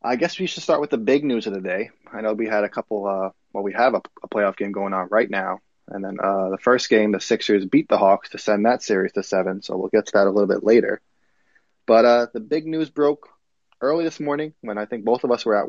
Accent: American